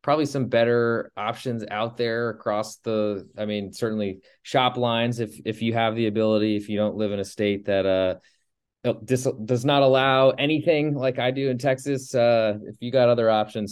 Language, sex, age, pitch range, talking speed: English, male, 20-39, 100-120 Hz, 190 wpm